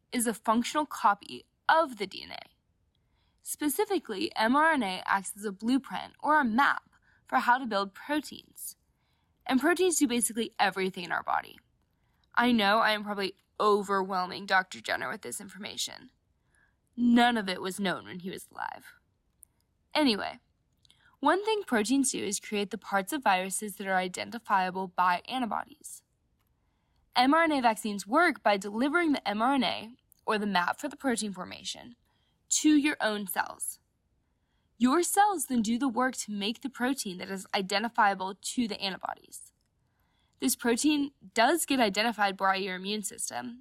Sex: female